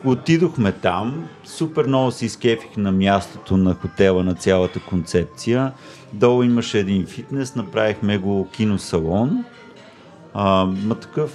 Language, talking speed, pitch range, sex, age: Bulgarian, 120 wpm, 95-130 Hz, male, 40-59